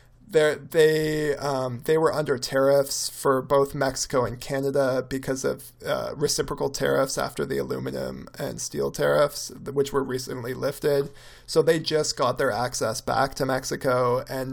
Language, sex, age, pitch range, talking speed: English, male, 20-39, 130-155 Hz, 150 wpm